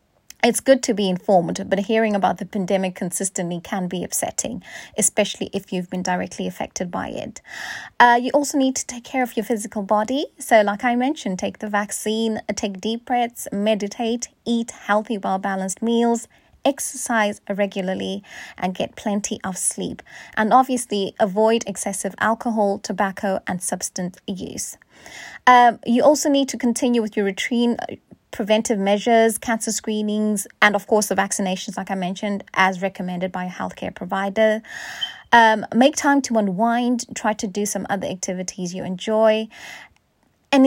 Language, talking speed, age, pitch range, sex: English, 155 wpm, 20-39, 195-235 Hz, female